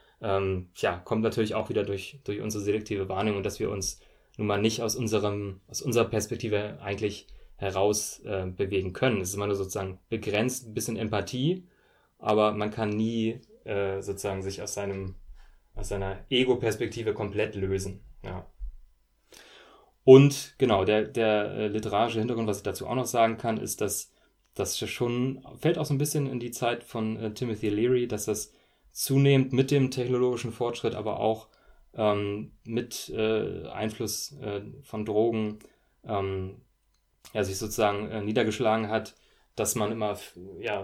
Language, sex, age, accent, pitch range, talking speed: German, male, 20-39, German, 100-120 Hz, 160 wpm